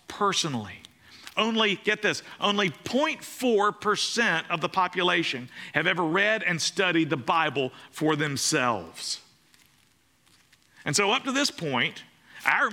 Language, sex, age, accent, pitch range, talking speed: English, male, 50-69, American, 145-195 Hz, 120 wpm